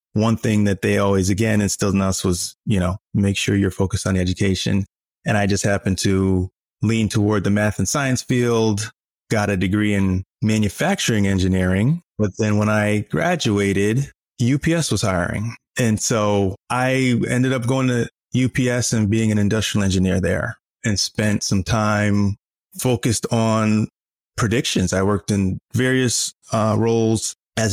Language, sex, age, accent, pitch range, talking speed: English, male, 20-39, American, 95-110 Hz, 155 wpm